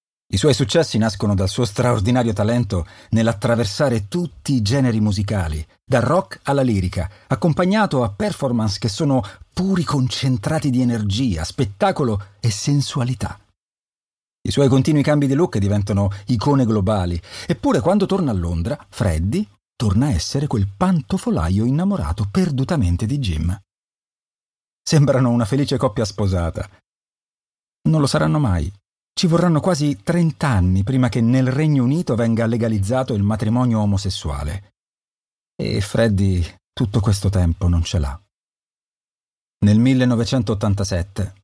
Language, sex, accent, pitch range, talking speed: Italian, male, native, 95-130 Hz, 125 wpm